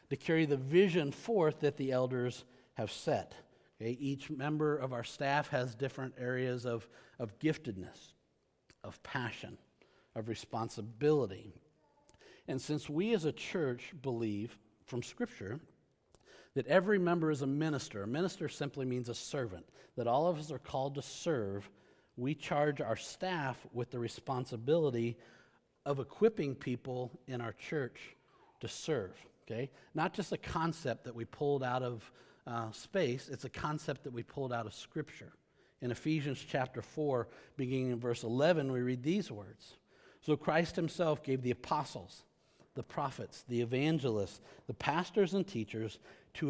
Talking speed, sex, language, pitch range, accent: 150 wpm, male, English, 120-150 Hz, American